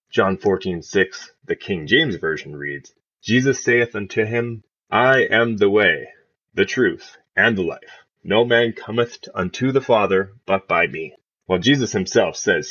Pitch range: 105-145 Hz